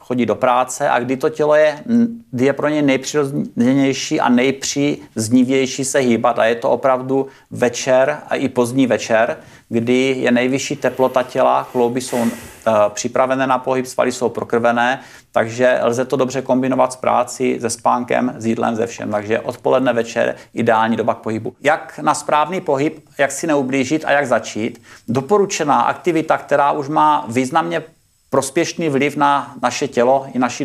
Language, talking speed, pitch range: Czech, 165 wpm, 125-145 Hz